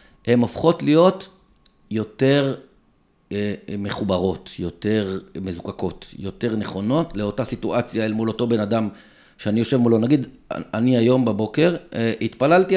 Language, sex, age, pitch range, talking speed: Hebrew, male, 50-69, 105-145 Hz, 115 wpm